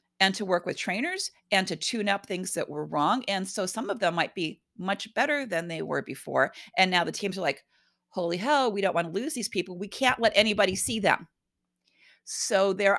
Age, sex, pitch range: 40-59, female, 180-225 Hz